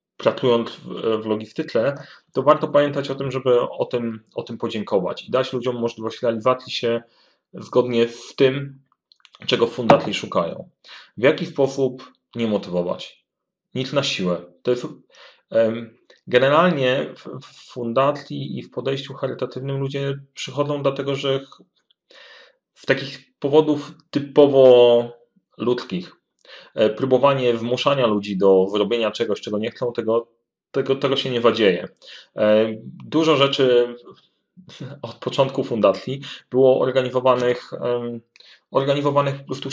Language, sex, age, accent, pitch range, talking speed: Polish, male, 30-49, native, 120-140 Hz, 115 wpm